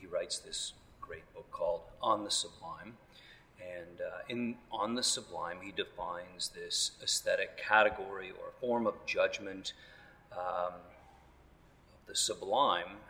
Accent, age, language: American, 40-59, English